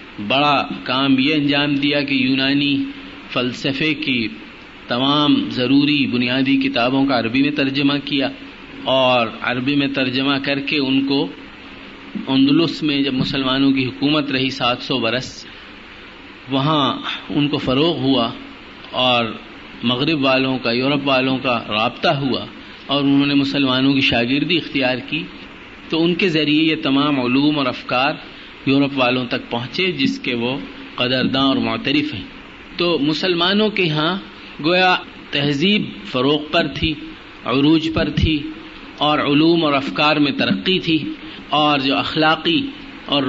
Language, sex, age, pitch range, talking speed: Urdu, male, 50-69, 130-155 Hz, 140 wpm